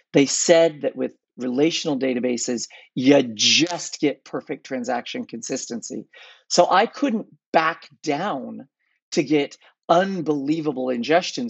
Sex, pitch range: male, 135-190 Hz